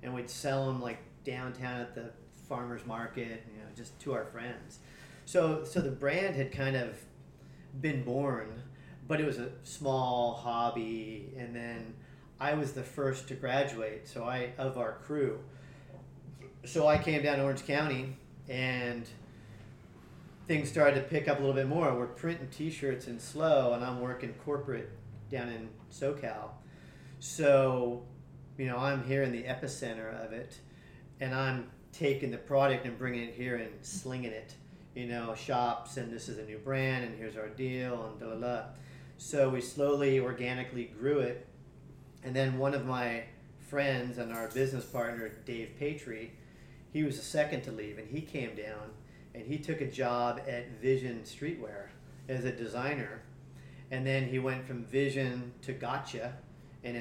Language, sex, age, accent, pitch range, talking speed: English, male, 40-59, American, 120-140 Hz, 165 wpm